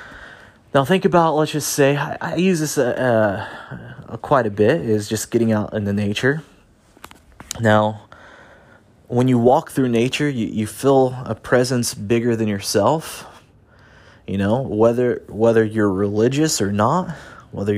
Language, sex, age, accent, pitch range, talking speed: English, male, 30-49, American, 105-130 Hz, 150 wpm